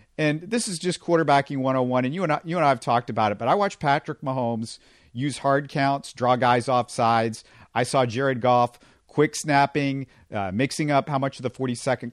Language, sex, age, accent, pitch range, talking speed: English, male, 50-69, American, 115-140 Hz, 205 wpm